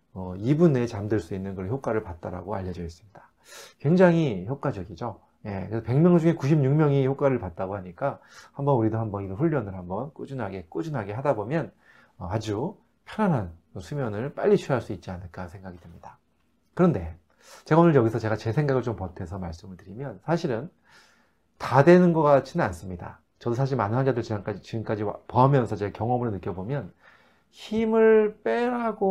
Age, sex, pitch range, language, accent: 40-59, male, 100-145 Hz, Korean, native